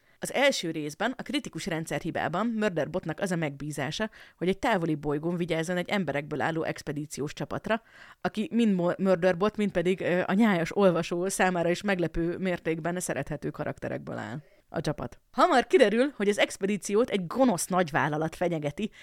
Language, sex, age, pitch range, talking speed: Hungarian, female, 30-49, 165-210 Hz, 150 wpm